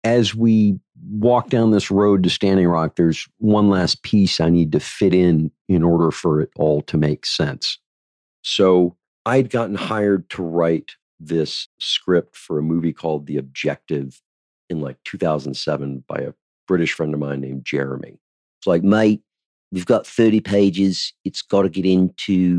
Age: 50-69